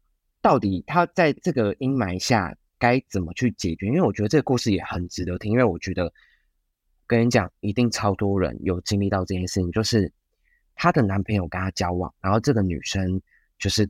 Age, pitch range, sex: 20-39, 90-110 Hz, male